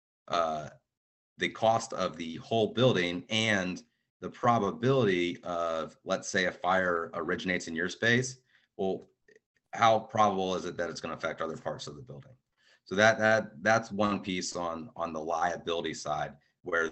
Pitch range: 80-100 Hz